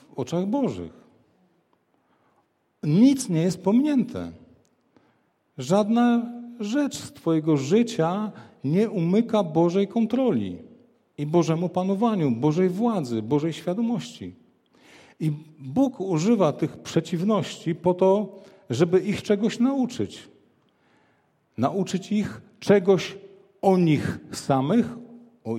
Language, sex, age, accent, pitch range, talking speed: Polish, male, 50-69, native, 140-195 Hz, 95 wpm